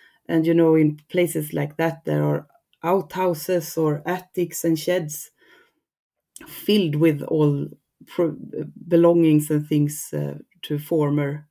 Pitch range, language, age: 150-185 Hz, English, 30-49